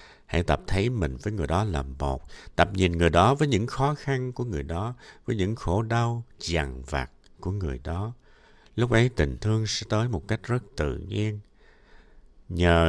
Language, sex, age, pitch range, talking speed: Vietnamese, male, 60-79, 80-115 Hz, 190 wpm